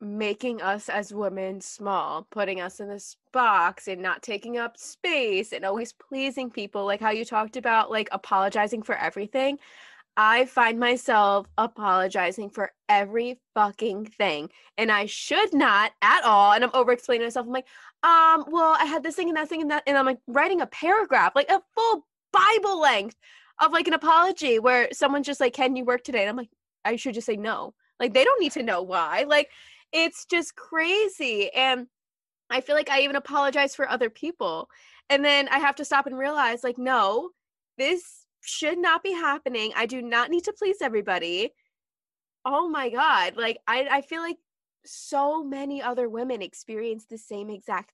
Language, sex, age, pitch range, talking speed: English, female, 20-39, 220-305 Hz, 185 wpm